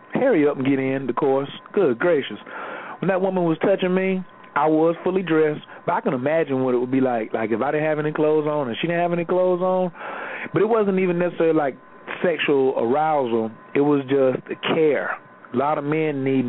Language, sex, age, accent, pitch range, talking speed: English, male, 40-59, American, 135-165 Hz, 220 wpm